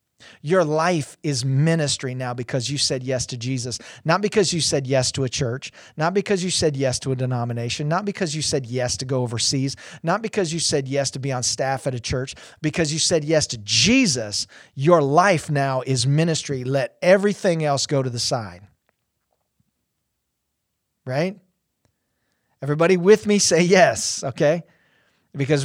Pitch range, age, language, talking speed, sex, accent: 135-175 Hz, 40-59, English, 170 wpm, male, American